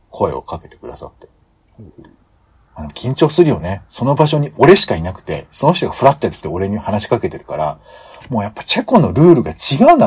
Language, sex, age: Japanese, male, 50-69